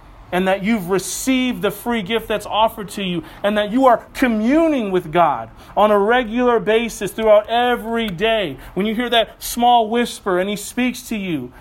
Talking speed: 185 wpm